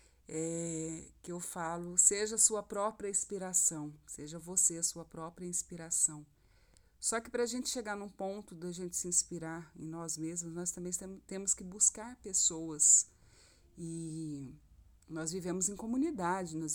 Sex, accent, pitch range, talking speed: female, Brazilian, 160-220 Hz, 155 wpm